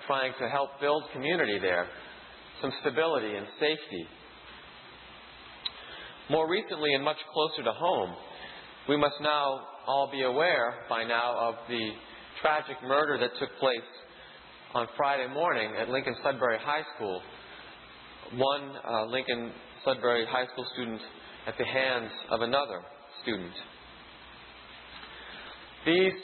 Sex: male